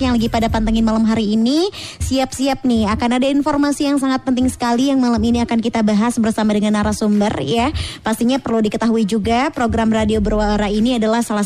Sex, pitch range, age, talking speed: male, 210-260 Hz, 20-39, 190 wpm